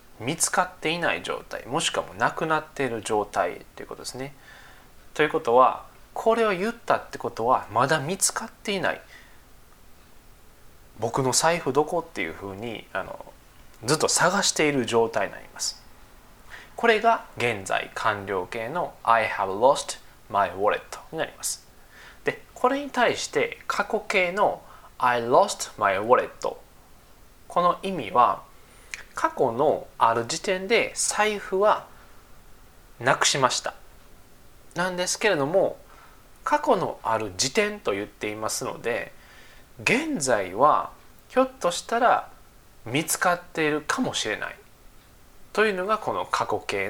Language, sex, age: Japanese, male, 20-39